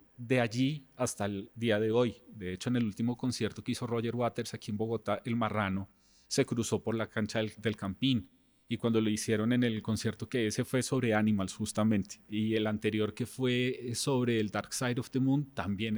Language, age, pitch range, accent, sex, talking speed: Spanish, 30-49, 105-130 Hz, Colombian, male, 210 wpm